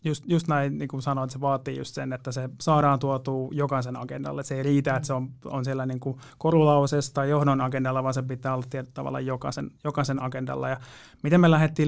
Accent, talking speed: native, 215 wpm